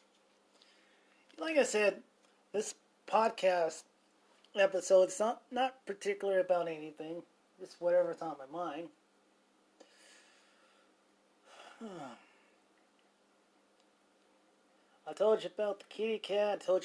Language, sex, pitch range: English, male, 165-215 Hz